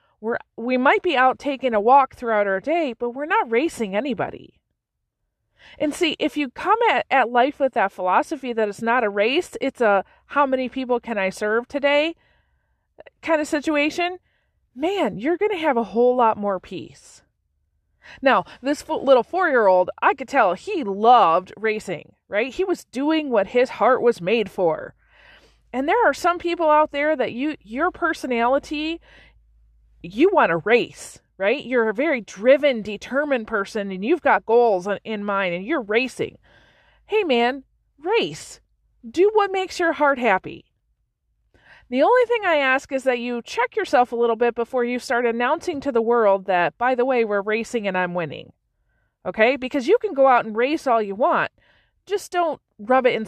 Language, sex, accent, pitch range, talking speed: English, female, American, 220-305 Hz, 180 wpm